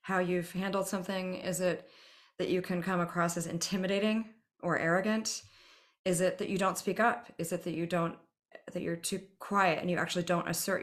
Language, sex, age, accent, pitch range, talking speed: English, female, 30-49, American, 160-180 Hz, 200 wpm